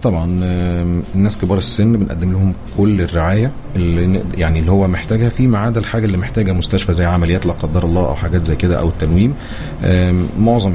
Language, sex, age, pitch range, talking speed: English, male, 30-49, 85-100 Hz, 175 wpm